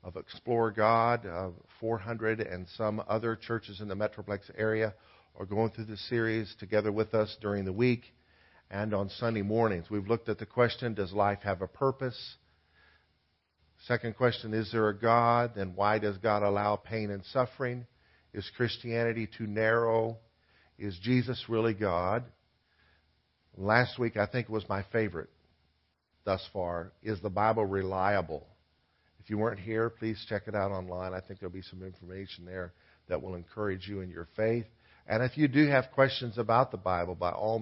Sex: male